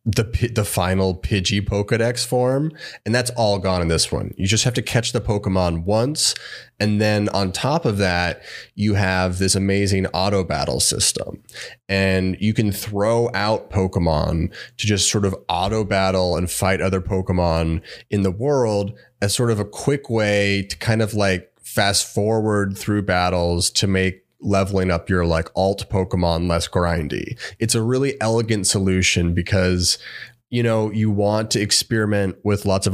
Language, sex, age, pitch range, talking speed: English, male, 30-49, 95-110 Hz, 170 wpm